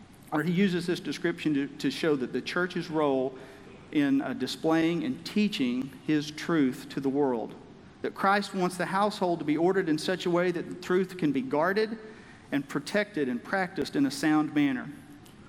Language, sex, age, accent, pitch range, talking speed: English, male, 50-69, American, 140-180 Hz, 185 wpm